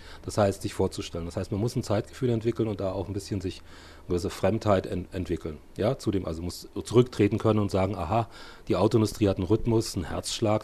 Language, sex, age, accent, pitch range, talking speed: German, male, 40-59, German, 90-115 Hz, 215 wpm